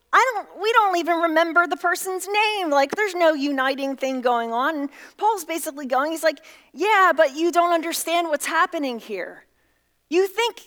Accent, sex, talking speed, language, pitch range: American, female, 180 wpm, English, 270-345 Hz